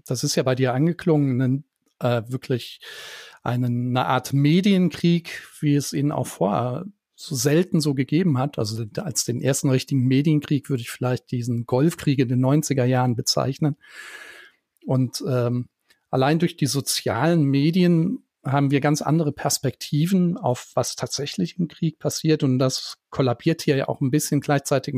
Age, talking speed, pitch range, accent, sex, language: 40-59, 155 wpm, 125-155 Hz, German, male, German